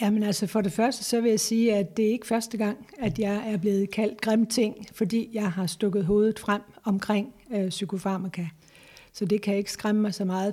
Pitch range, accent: 190-215 Hz, native